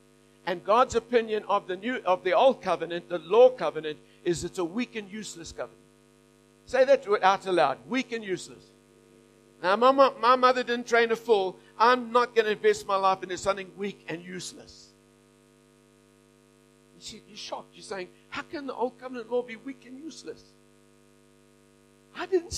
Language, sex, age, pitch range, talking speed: English, male, 60-79, 145-230 Hz, 175 wpm